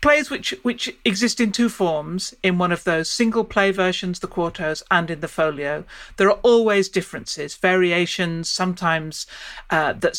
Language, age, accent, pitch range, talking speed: English, 40-59, British, 165-195 Hz, 165 wpm